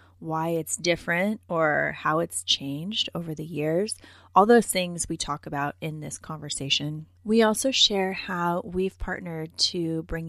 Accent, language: American, English